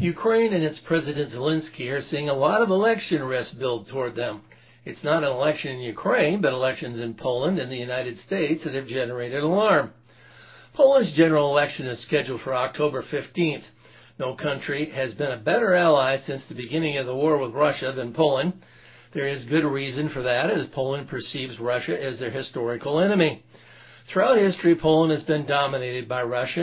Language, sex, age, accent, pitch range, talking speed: English, male, 60-79, American, 130-160 Hz, 180 wpm